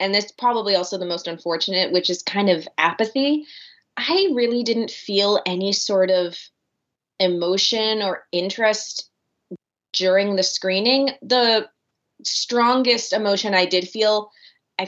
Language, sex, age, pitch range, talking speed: English, female, 20-39, 180-245 Hz, 130 wpm